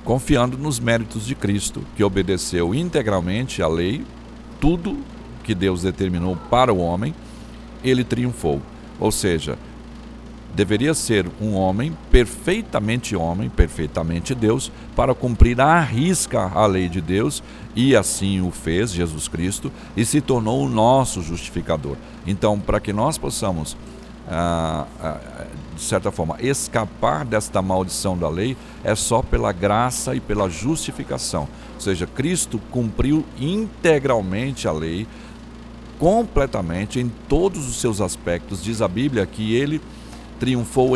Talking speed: 130 wpm